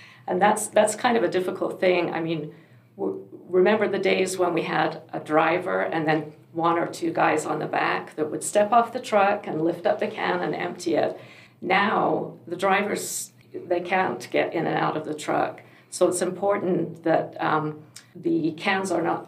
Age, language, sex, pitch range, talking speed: 50-69, English, female, 160-195 Hz, 195 wpm